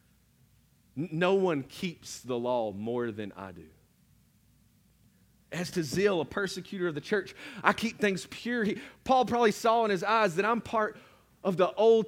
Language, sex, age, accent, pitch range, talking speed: English, male, 40-59, American, 120-190 Hz, 170 wpm